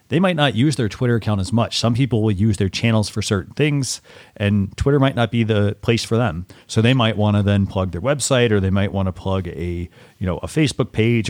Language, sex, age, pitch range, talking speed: English, male, 40-59, 95-115 Hz, 255 wpm